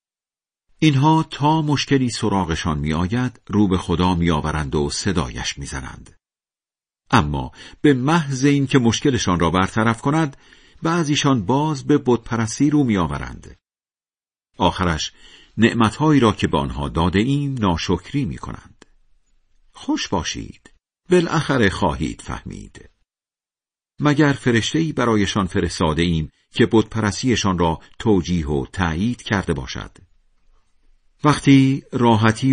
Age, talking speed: 50-69, 105 wpm